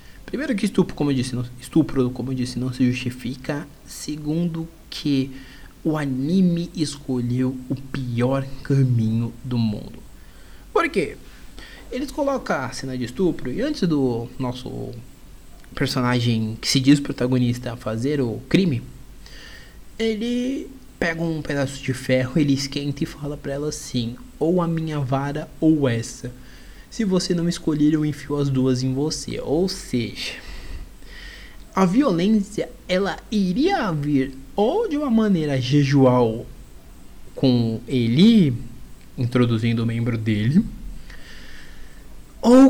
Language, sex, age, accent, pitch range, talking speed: Portuguese, male, 20-39, Brazilian, 125-170 Hz, 125 wpm